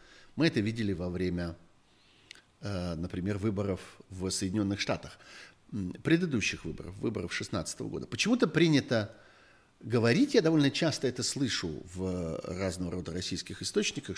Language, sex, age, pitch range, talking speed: Russian, male, 50-69, 90-130 Hz, 120 wpm